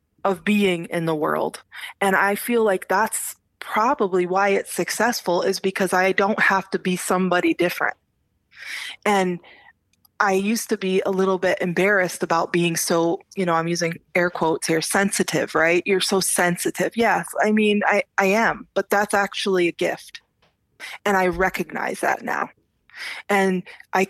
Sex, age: female, 20-39